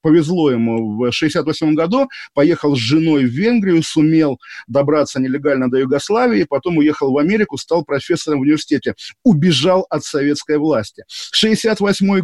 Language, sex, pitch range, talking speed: Russian, male, 140-170 Hz, 135 wpm